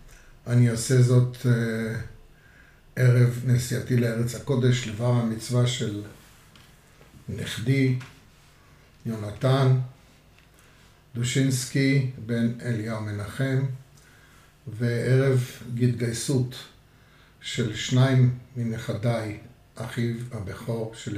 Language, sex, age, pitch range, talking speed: Hebrew, male, 50-69, 115-130 Hz, 70 wpm